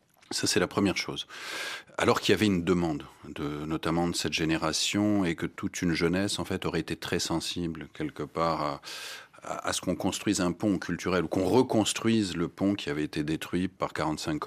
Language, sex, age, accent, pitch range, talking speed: French, male, 40-59, French, 85-105 Hz, 205 wpm